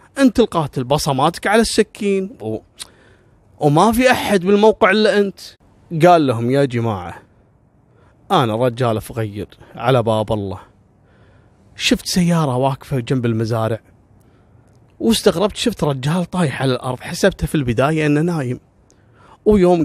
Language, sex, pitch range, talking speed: Arabic, male, 115-175 Hz, 120 wpm